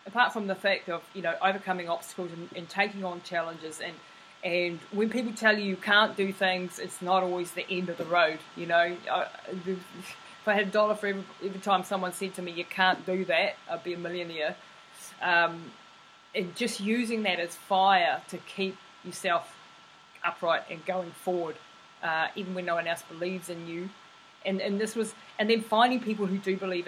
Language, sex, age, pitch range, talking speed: English, female, 20-39, 170-200 Hz, 200 wpm